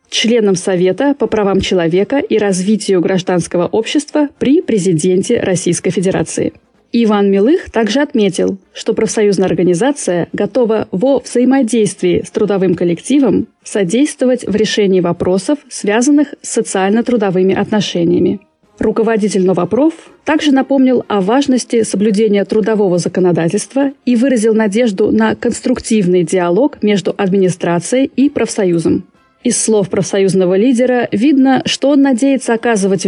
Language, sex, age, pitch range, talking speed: Russian, female, 20-39, 185-245 Hz, 110 wpm